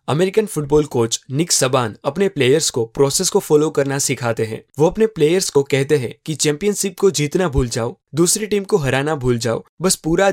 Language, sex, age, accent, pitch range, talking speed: English, male, 20-39, Indian, 135-175 Hz, 200 wpm